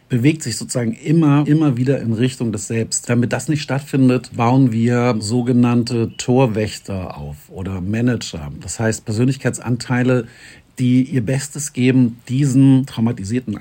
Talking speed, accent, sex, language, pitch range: 130 wpm, German, male, German, 110-130 Hz